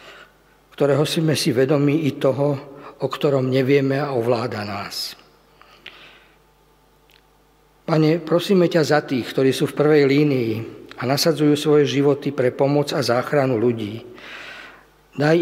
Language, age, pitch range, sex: Slovak, 50-69, 130-150 Hz, male